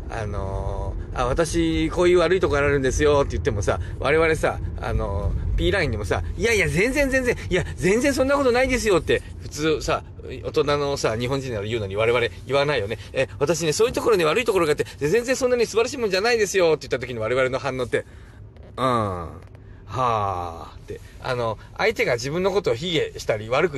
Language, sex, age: Japanese, male, 40-59